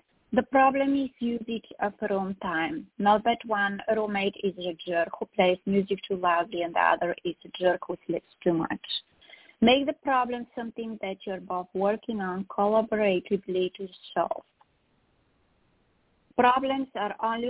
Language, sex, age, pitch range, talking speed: English, female, 20-39, 185-225 Hz, 155 wpm